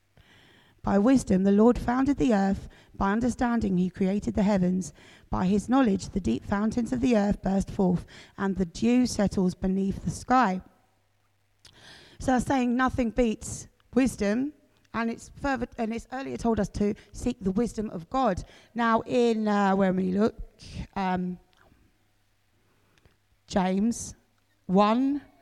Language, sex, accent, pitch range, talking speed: English, female, British, 190-245 Hz, 145 wpm